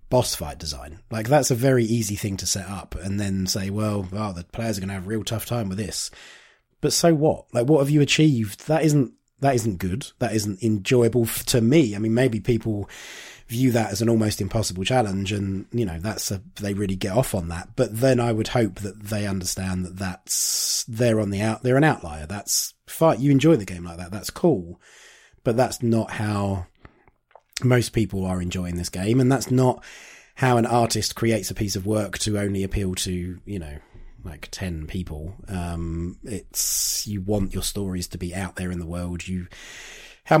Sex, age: male, 20-39